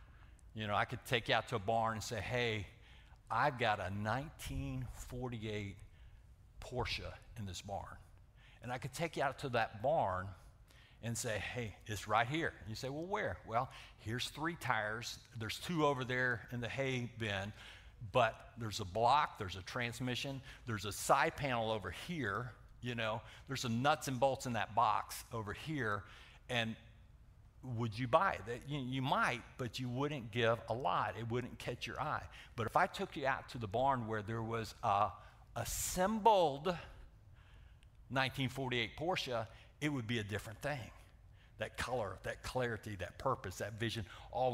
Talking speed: 170 wpm